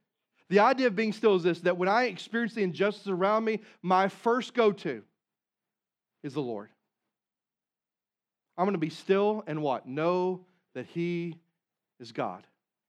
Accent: American